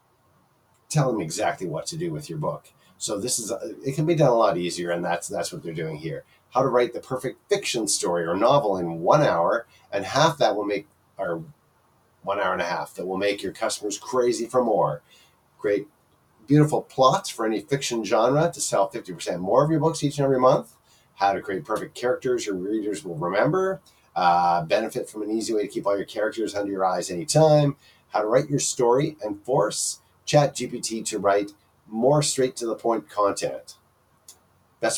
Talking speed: 200 wpm